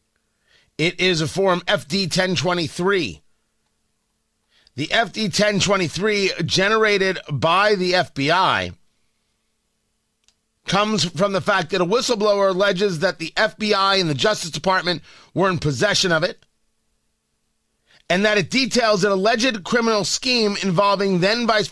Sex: male